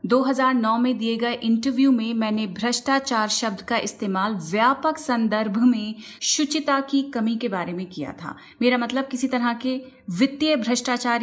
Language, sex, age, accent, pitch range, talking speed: Hindi, female, 30-49, native, 215-265 Hz, 155 wpm